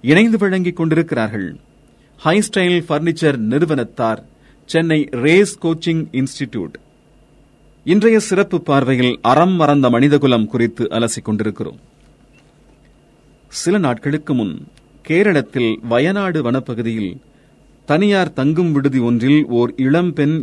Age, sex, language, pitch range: 40-59, male, Tamil, 120-155 Hz